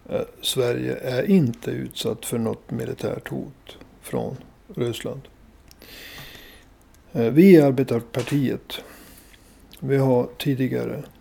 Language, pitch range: Swedish, 115-150 Hz